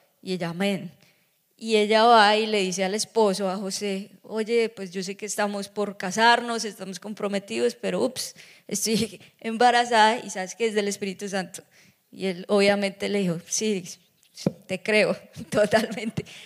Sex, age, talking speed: female, 20-39, 155 wpm